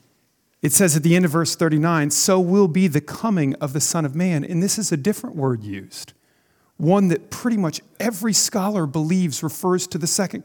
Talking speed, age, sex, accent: 205 wpm, 40-59, male, American